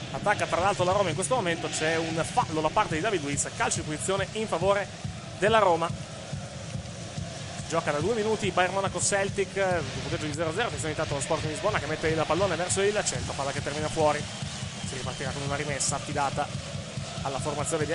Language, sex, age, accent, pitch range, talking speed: Italian, male, 30-49, native, 145-205 Hz, 200 wpm